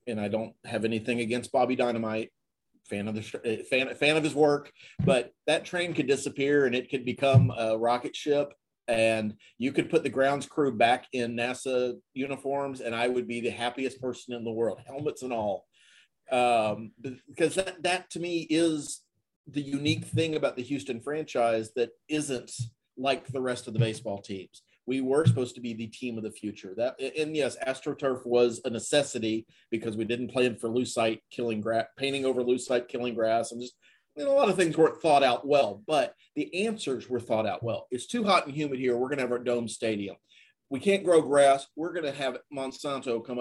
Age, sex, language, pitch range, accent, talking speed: 40-59, male, English, 115-145 Hz, American, 205 wpm